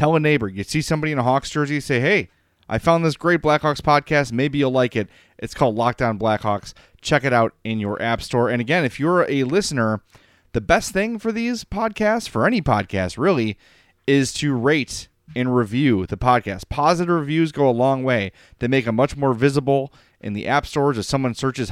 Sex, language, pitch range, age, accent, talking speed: male, English, 110-150 Hz, 30-49, American, 205 wpm